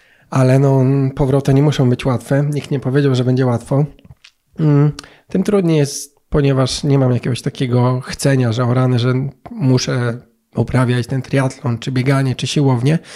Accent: native